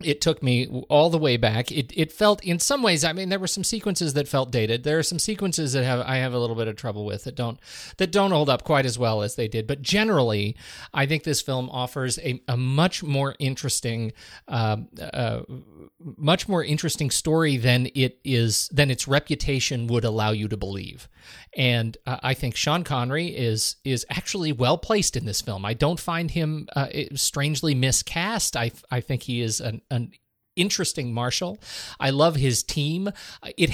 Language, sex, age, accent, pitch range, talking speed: English, male, 40-59, American, 120-165 Hz, 200 wpm